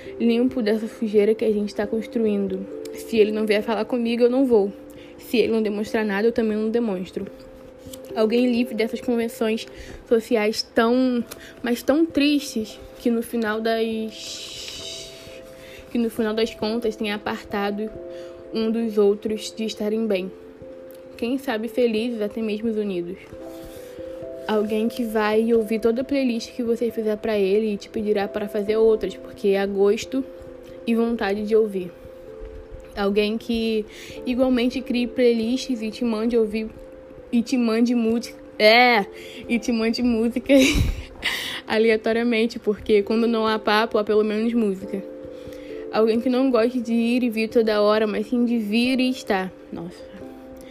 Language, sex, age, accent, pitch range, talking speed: Portuguese, female, 10-29, Brazilian, 210-240 Hz, 155 wpm